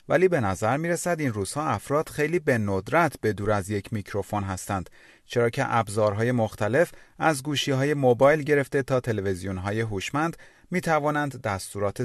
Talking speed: 145 wpm